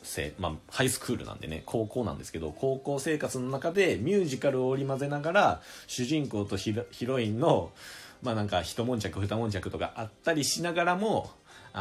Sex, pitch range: male, 95-145 Hz